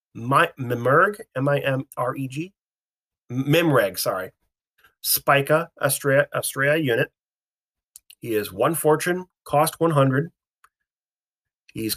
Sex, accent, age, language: male, American, 30-49, English